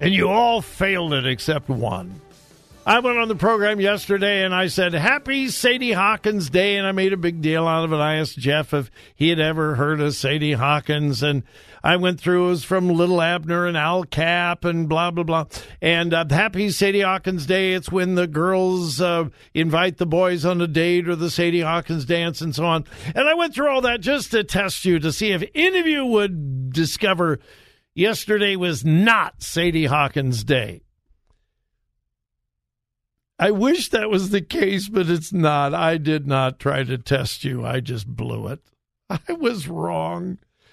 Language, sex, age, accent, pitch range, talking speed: English, male, 50-69, American, 150-195 Hz, 190 wpm